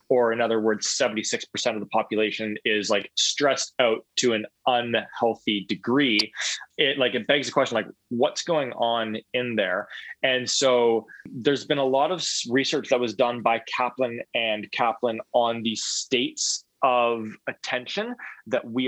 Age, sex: 20-39, male